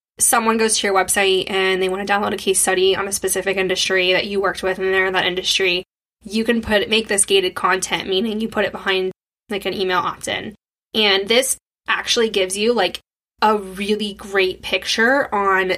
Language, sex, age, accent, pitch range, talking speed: English, female, 10-29, American, 190-230 Hz, 200 wpm